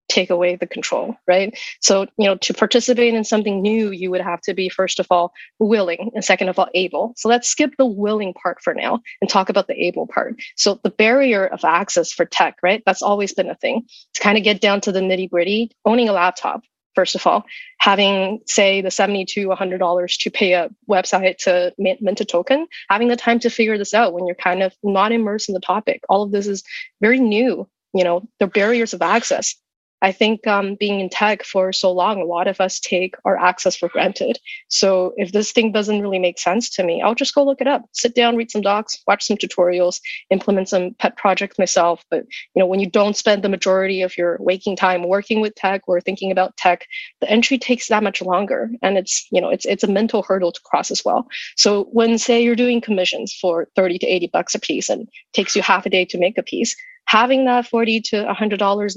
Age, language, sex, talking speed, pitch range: 20-39, English, female, 230 wpm, 185-230 Hz